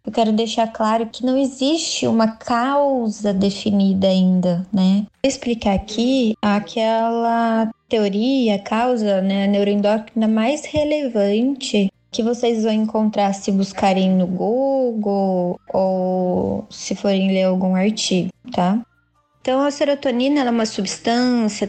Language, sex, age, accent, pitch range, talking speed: Portuguese, female, 20-39, Brazilian, 205-265 Hz, 120 wpm